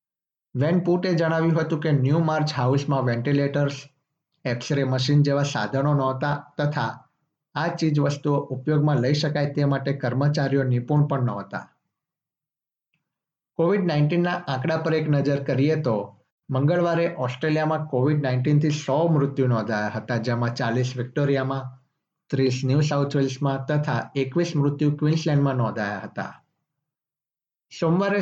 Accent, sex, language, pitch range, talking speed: native, male, Gujarati, 125-150 Hz, 140 wpm